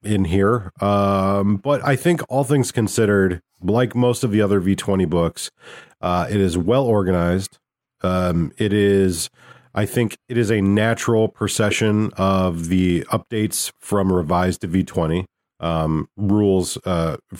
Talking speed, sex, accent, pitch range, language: 140 wpm, male, American, 95-120 Hz, English